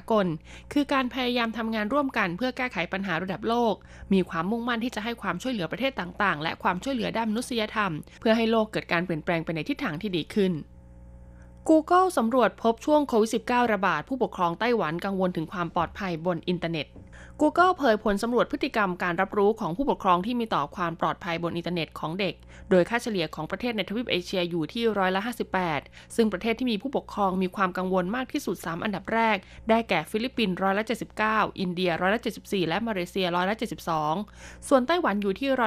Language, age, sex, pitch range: Thai, 20-39, female, 175-230 Hz